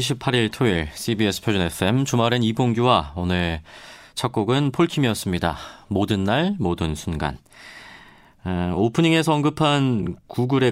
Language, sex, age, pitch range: Korean, male, 40-59, 100-150 Hz